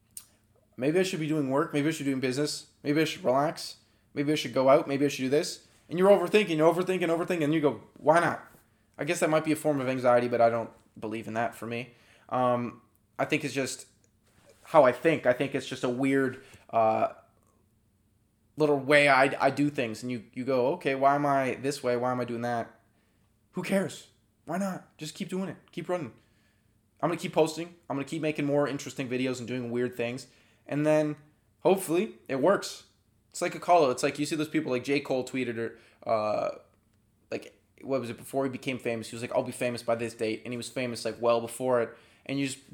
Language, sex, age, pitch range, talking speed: English, male, 20-39, 115-150 Hz, 230 wpm